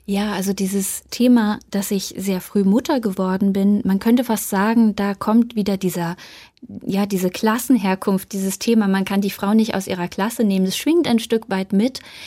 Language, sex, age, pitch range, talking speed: German, female, 20-39, 190-225 Hz, 190 wpm